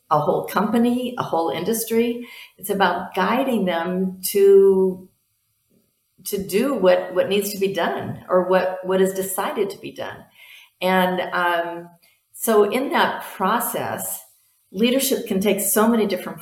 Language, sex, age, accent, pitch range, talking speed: English, female, 50-69, American, 140-185 Hz, 145 wpm